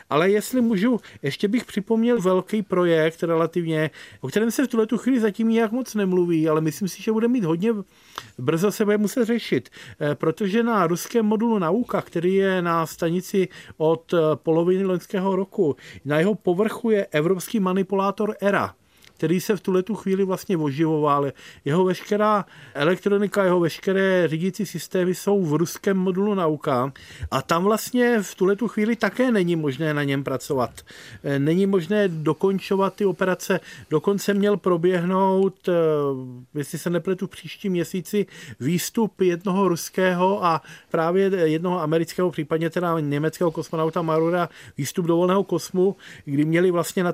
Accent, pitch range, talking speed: native, 160-195 Hz, 145 wpm